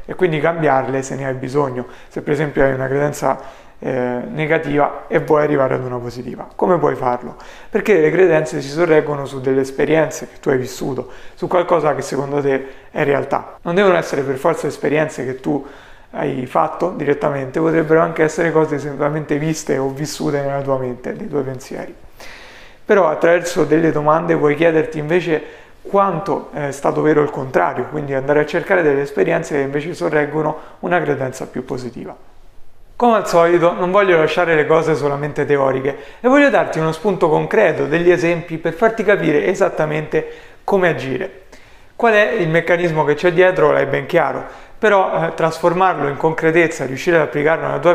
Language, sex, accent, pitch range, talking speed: Italian, male, native, 140-170 Hz, 175 wpm